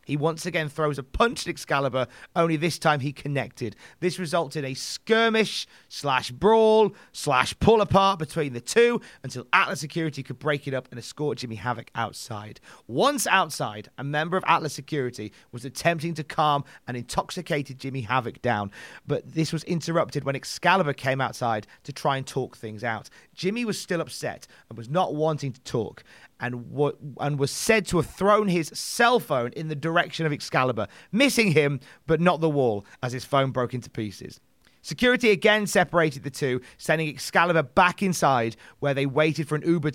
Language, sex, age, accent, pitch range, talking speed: English, male, 30-49, British, 130-170 Hz, 180 wpm